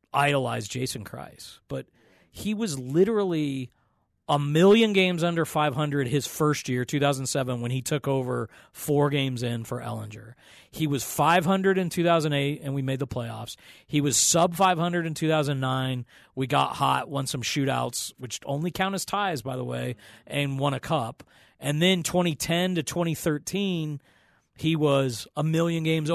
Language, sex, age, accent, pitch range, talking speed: English, male, 40-59, American, 130-165 Hz, 185 wpm